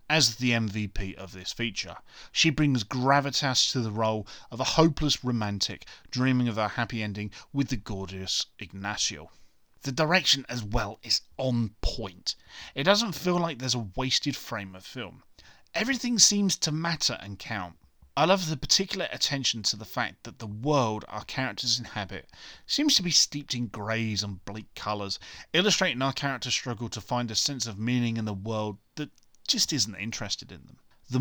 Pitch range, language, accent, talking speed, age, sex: 105-145 Hz, English, British, 175 wpm, 30-49, male